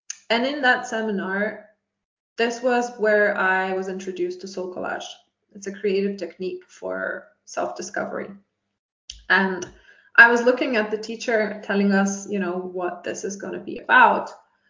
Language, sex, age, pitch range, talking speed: English, female, 20-39, 205-255 Hz, 150 wpm